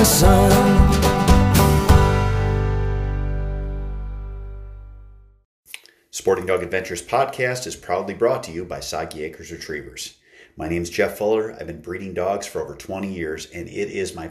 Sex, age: male, 30-49